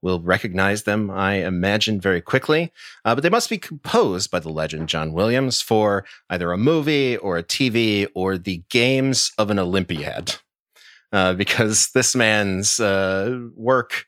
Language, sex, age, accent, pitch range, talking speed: English, male, 30-49, American, 95-125 Hz, 160 wpm